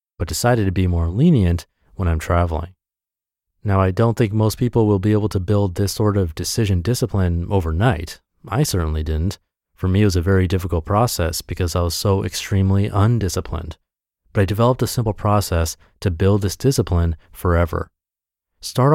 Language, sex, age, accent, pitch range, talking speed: English, male, 30-49, American, 85-120 Hz, 175 wpm